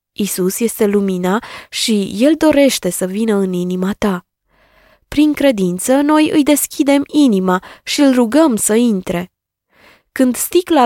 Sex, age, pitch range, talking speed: female, 20-39, 195-275 Hz, 135 wpm